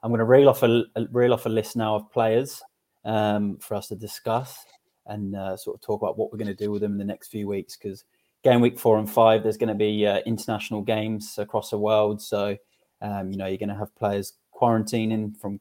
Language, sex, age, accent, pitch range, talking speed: English, male, 20-39, British, 105-115 Hz, 245 wpm